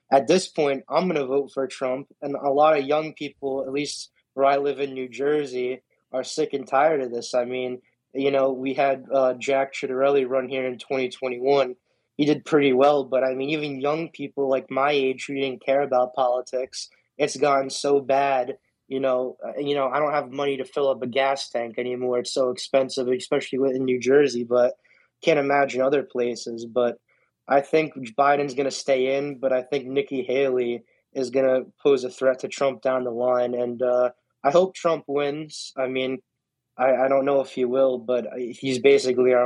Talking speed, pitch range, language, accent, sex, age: 205 wpm, 125-140 Hz, English, American, male, 20-39